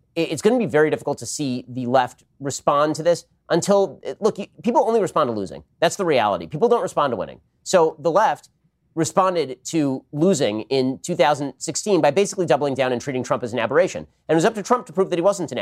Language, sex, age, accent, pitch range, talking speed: English, male, 30-49, American, 135-175 Hz, 225 wpm